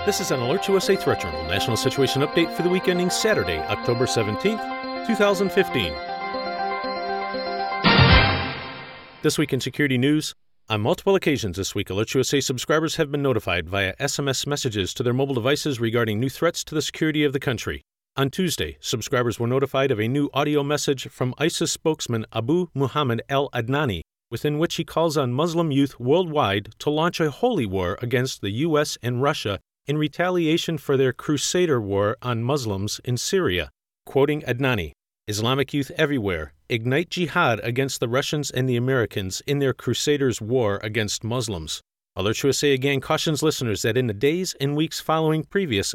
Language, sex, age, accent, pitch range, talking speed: English, male, 40-59, American, 115-155 Hz, 165 wpm